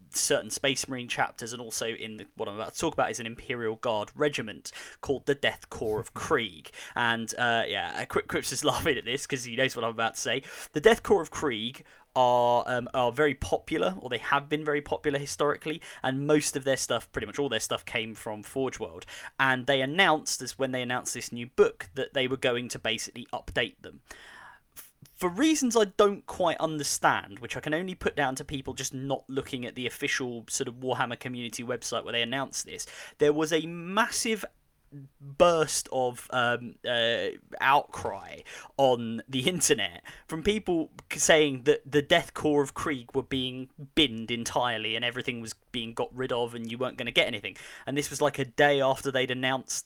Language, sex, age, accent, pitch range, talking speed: English, male, 10-29, British, 120-150 Hz, 200 wpm